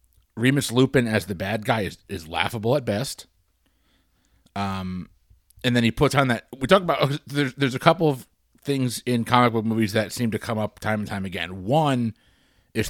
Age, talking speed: 40-59, 195 wpm